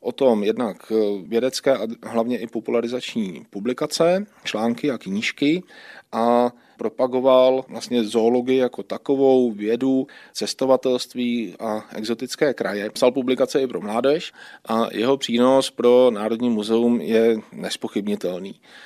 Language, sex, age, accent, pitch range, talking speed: Czech, male, 40-59, native, 110-130 Hz, 115 wpm